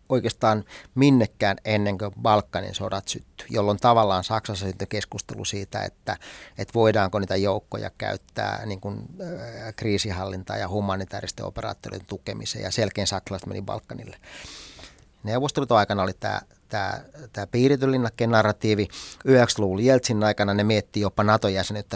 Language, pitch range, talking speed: Finnish, 100-115 Hz, 120 wpm